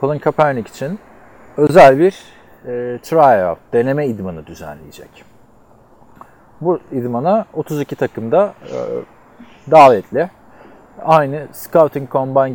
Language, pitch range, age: Turkish, 110-150 Hz, 40-59